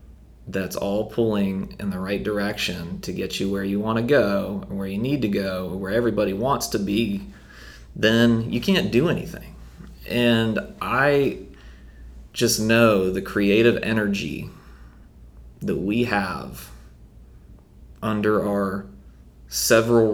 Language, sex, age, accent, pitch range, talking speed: English, male, 30-49, American, 75-105 Hz, 130 wpm